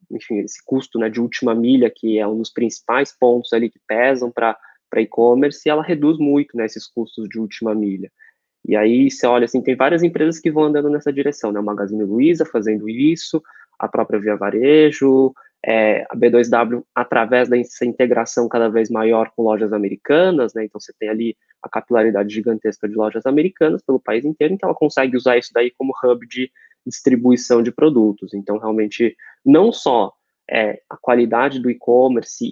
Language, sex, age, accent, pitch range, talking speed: Portuguese, male, 20-39, Brazilian, 115-150 Hz, 180 wpm